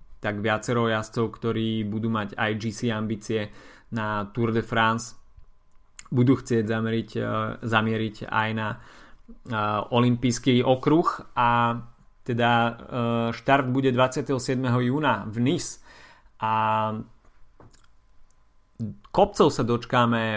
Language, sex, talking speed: Slovak, male, 100 wpm